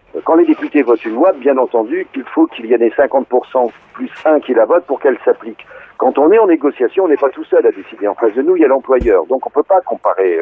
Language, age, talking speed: French, 50-69, 280 wpm